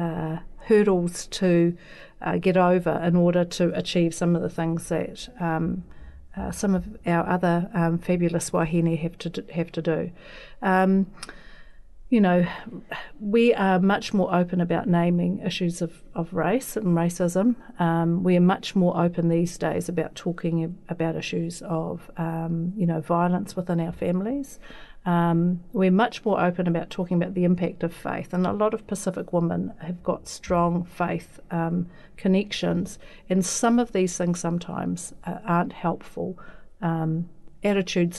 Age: 40-59